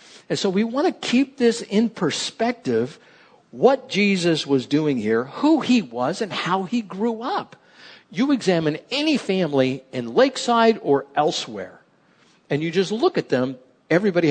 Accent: American